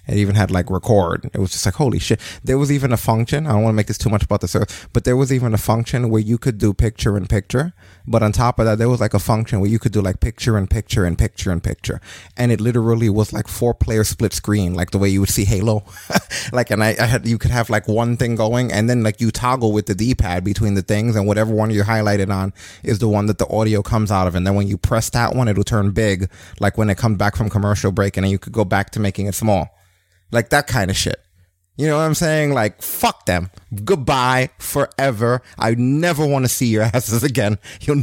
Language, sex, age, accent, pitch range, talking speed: English, male, 20-39, American, 100-120 Hz, 265 wpm